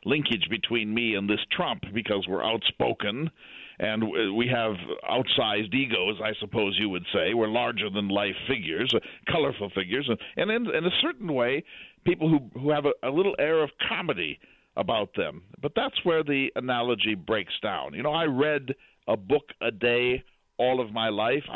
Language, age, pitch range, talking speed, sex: English, 50-69, 115-150 Hz, 180 wpm, male